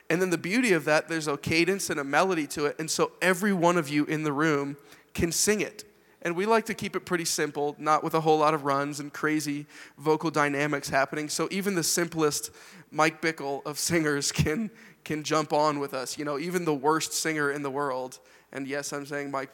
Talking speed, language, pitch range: 225 wpm, English, 145-165 Hz